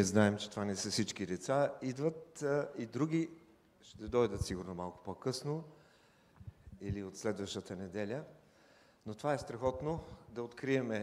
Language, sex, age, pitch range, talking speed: English, male, 50-69, 115-170 Hz, 145 wpm